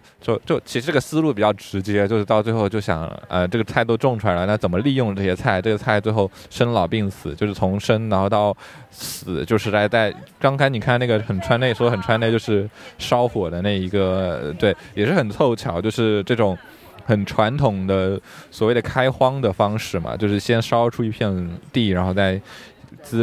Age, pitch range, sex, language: 20-39, 100-125 Hz, male, Chinese